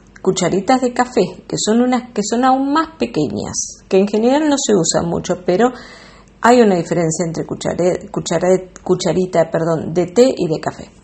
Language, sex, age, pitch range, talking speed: Spanish, female, 40-59, 185-240 Hz, 175 wpm